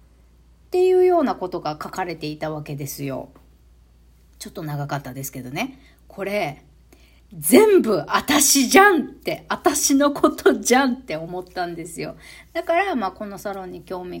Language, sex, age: Japanese, female, 40-59